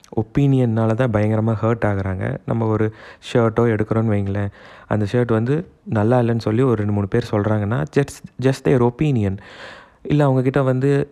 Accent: native